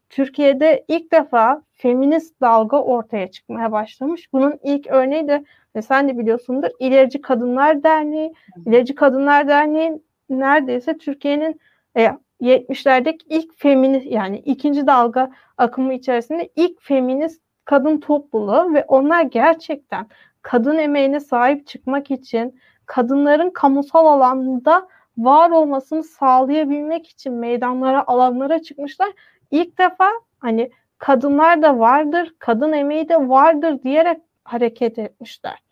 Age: 30-49